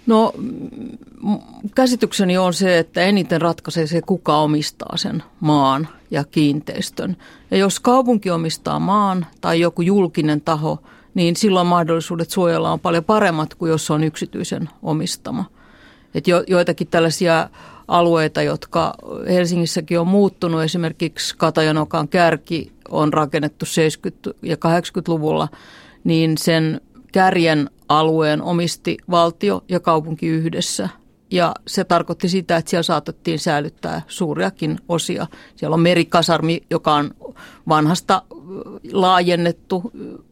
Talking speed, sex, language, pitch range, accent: 120 wpm, female, Finnish, 165-190 Hz, native